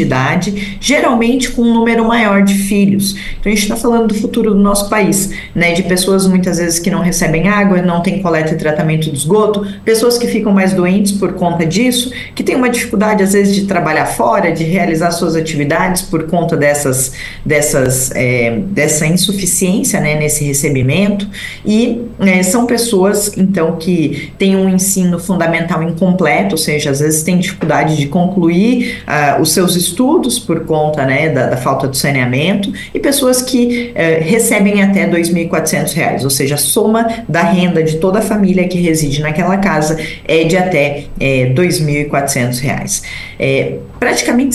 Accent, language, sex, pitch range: Brazilian, Portuguese, female, 155-200 Hz